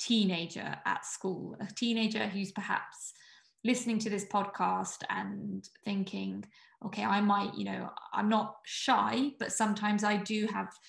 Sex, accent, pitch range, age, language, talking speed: female, British, 200-225 Hz, 20-39, English, 145 wpm